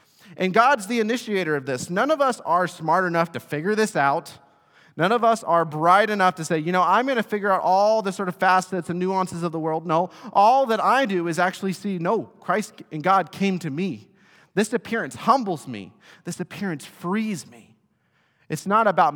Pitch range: 130-180 Hz